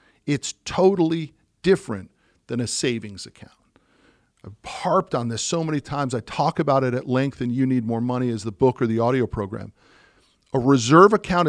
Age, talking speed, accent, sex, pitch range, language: 50-69, 185 wpm, American, male, 120-160 Hz, English